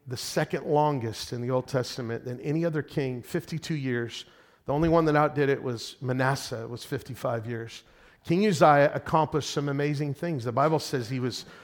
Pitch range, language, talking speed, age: 135-185 Hz, English, 185 wpm, 40-59